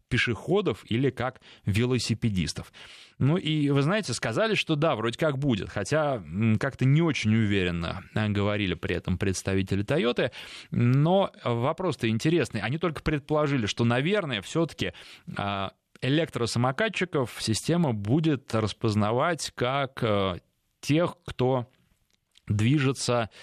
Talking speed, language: 105 wpm, Russian